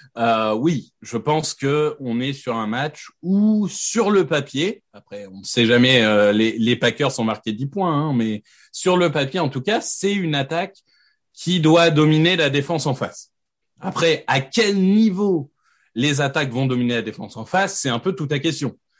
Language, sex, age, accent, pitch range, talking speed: French, male, 30-49, French, 130-180 Hz, 200 wpm